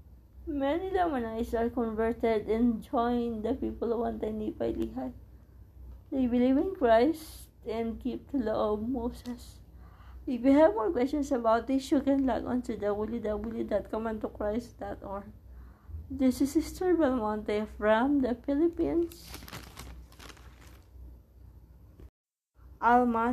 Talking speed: 115 wpm